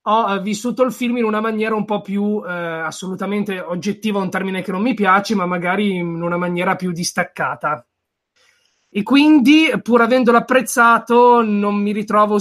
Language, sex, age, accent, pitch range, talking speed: Italian, male, 20-39, native, 175-210 Hz, 165 wpm